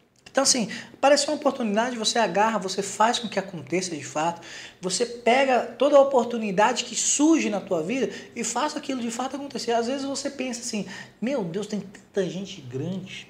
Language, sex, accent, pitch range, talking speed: Portuguese, male, Brazilian, 195-265 Hz, 185 wpm